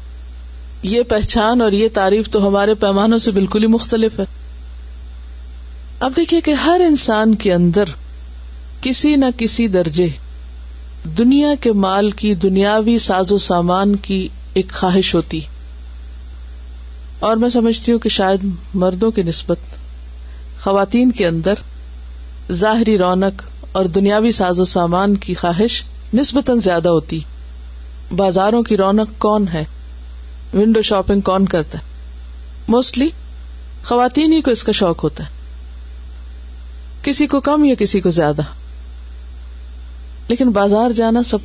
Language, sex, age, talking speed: Urdu, female, 50-69, 130 wpm